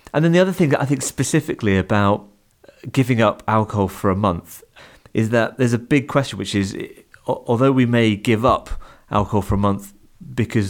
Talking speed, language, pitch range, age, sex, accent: 190 wpm, English, 100-120 Hz, 30-49, male, British